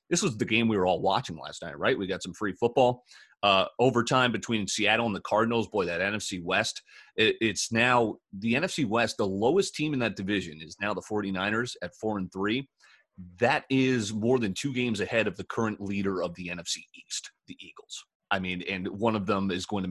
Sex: male